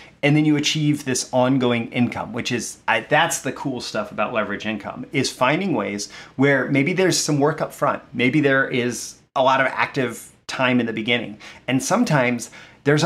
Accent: American